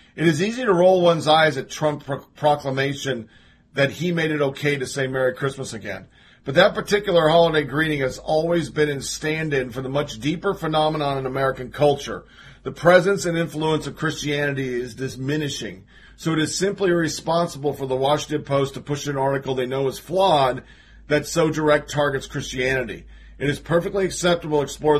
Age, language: 40-59, English